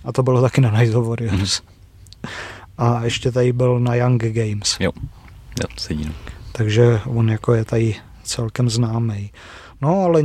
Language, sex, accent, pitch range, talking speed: Czech, male, native, 110-125 Hz, 135 wpm